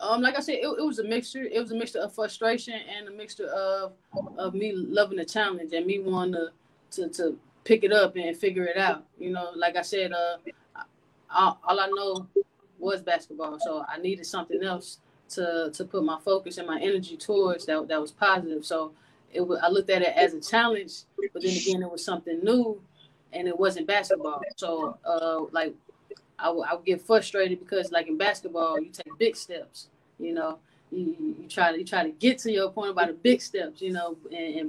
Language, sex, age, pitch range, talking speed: English, female, 20-39, 170-215 Hz, 215 wpm